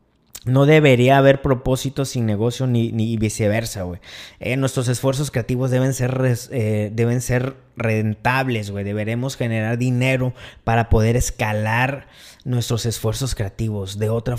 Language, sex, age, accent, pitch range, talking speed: Spanish, male, 20-39, Mexican, 110-130 Hz, 140 wpm